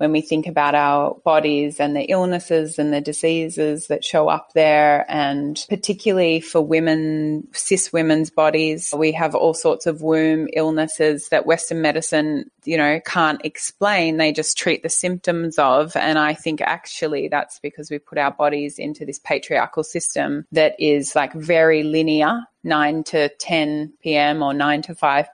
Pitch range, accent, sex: 150-160 Hz, Australian, female